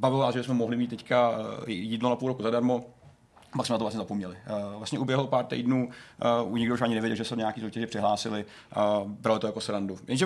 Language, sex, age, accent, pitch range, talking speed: Czech, male, 40-59, native, 110-125 Hz, 220 wpm